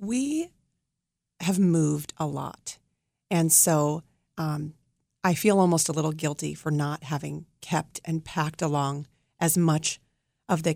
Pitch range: 155-185 Hz